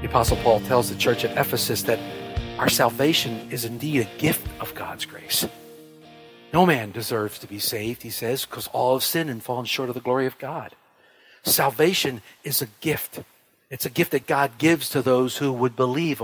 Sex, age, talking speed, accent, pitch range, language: male, 50-69, 195 wpm, American, 130-220 Hz, English